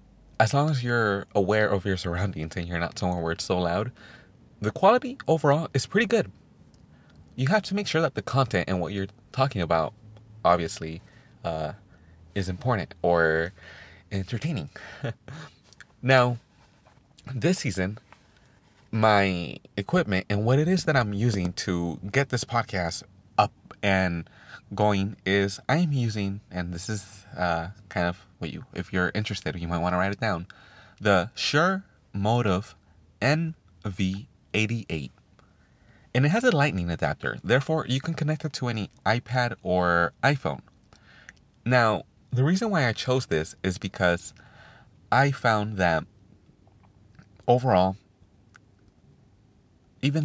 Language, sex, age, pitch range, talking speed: English, male, 30-49, 90-130 Hz, 135 wpm